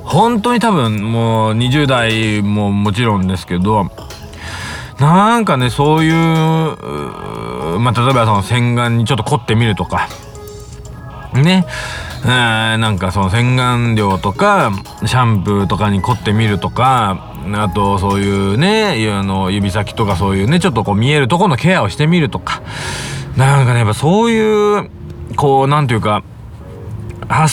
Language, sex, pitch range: Japanese, male, 105-150 Hz